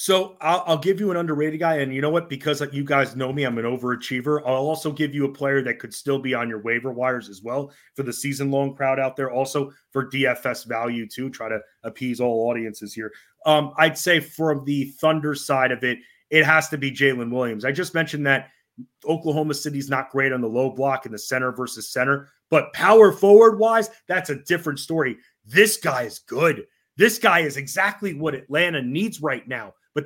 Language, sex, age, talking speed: English, male, 30-49, 210 wpm